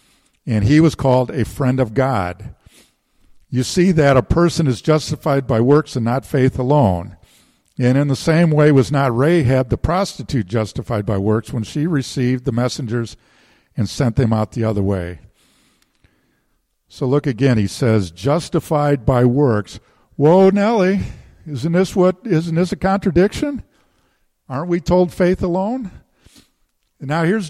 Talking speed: 145 wpm